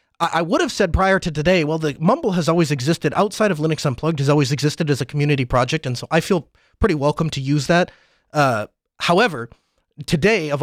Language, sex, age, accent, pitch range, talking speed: English, male, 30-49, American, 135-175 Hz, 210 wpm